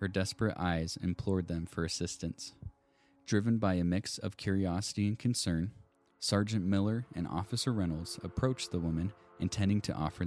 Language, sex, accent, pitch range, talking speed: English, male, American, 85-100 Hz, 150 wpm